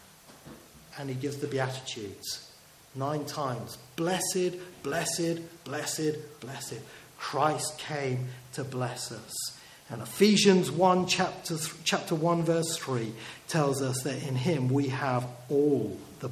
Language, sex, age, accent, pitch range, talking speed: English, male, 40-59, British, 130-190 Hz, 125 wpm